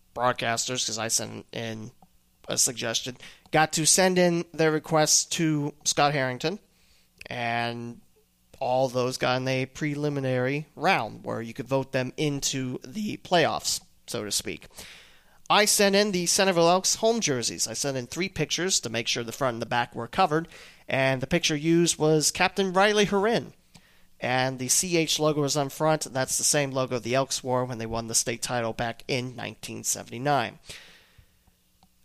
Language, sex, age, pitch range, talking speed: English, male, 30-49, 125-170 Hz, 165 wpm